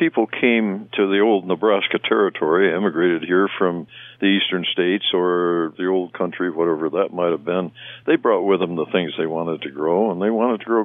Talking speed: 205 wpm